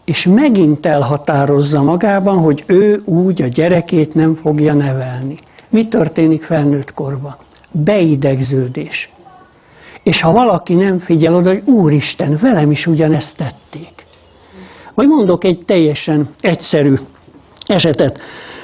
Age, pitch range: 60-79, 150-185 Hz